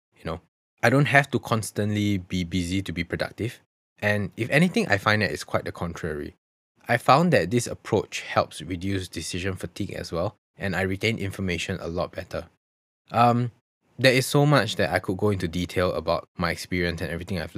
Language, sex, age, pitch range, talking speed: English, male, 20-39, 90-110 Hz, 195 wpm